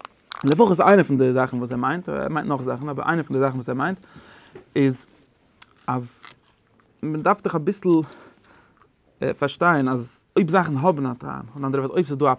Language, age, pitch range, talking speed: English, 30-49, 130-155 Hz, 170 wpm